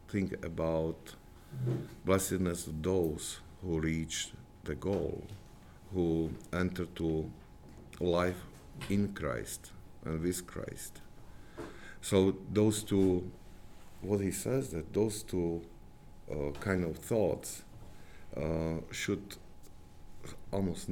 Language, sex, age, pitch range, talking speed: English, male, 50-69, 80-95 Hz, 100 wpm